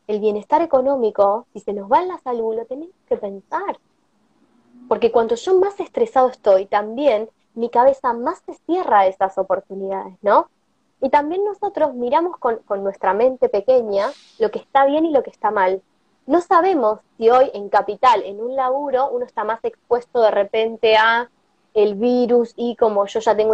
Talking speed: 180 wpm